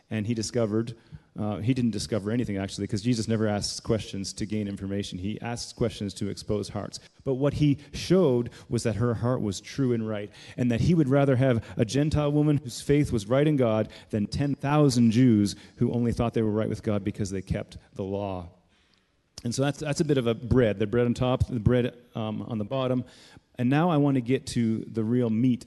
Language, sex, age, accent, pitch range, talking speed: English, male, 30-49, American, 110-135 Hz, 220 wpm